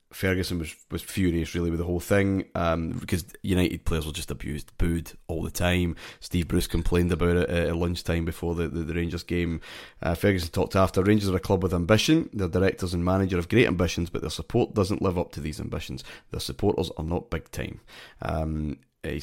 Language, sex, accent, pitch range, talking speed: English, male, British, 80-95 Hz, 210 wpm